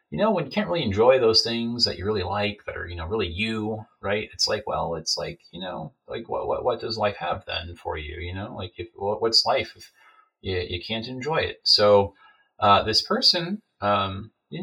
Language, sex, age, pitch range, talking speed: English, male, 30-49, 95-115 Hz, 225 wpm